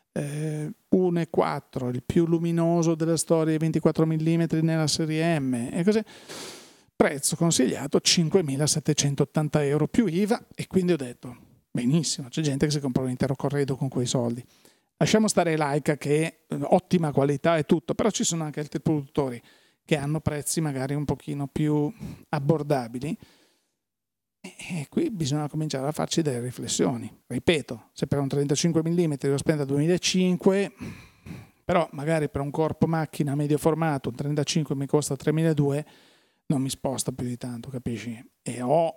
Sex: male